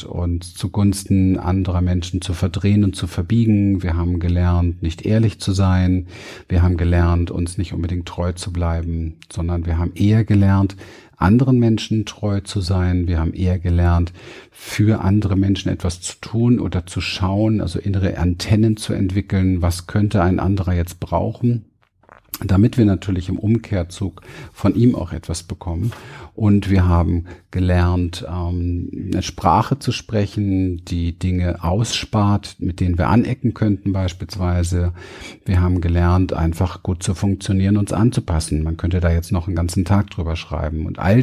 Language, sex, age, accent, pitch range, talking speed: German, male, 50-69, German, 90-105 Hz, 155 wpm